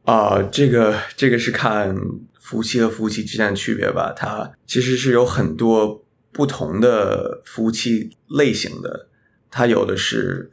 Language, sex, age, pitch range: Chinese, male, 20-39, 100-130 Hz